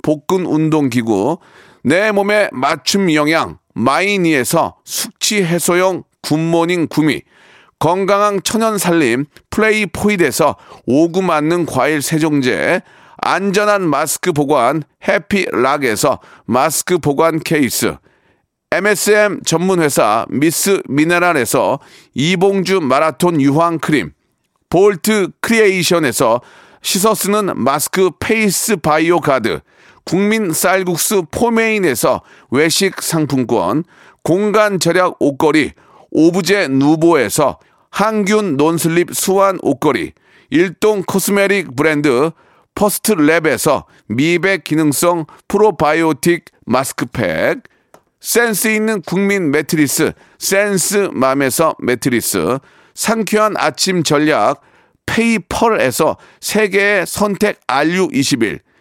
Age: 40-59